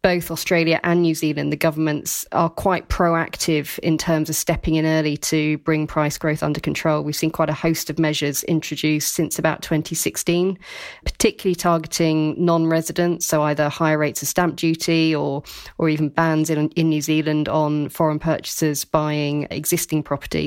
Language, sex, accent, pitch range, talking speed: English, female, British, 150-165 Hz, 165 wpm